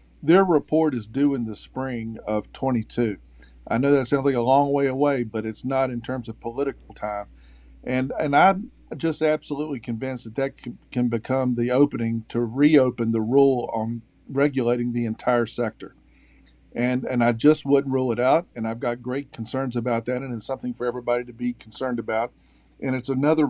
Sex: male